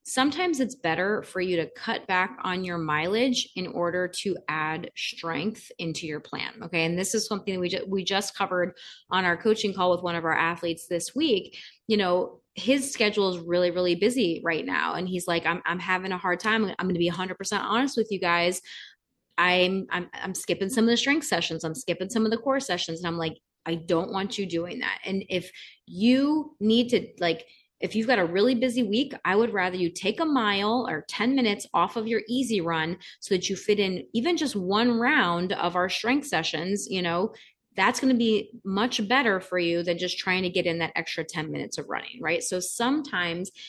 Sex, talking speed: female, 220 wpm